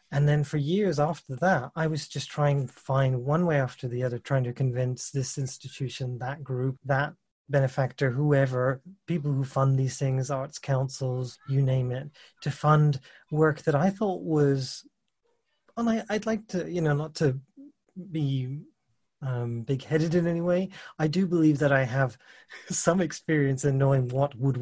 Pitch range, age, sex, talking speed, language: 135-160 Hz, 30-49, male, 175 wpm, English